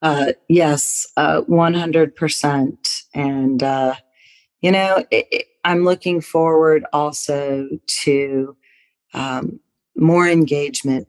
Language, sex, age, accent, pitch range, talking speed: English, female, 40-59, American, 140-160 Hz, 85 wpm